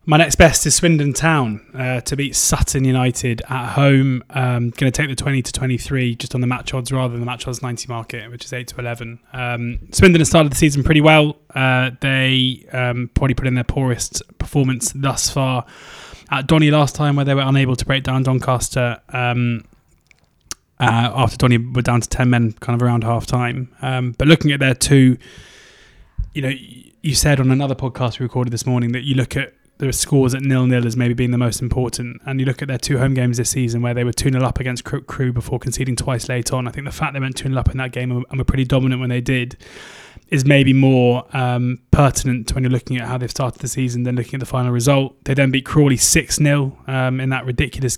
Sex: male